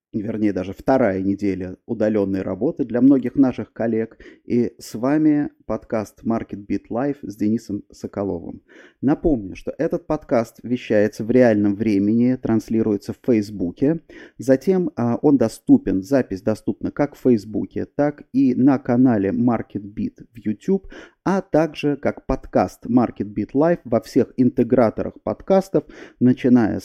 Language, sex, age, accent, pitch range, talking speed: Russian, male, 30-49, native, 110-150 Hz, 120 wpm